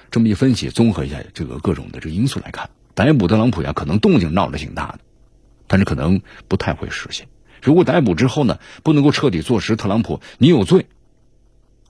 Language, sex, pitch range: Chinese, male, 85-115 Hz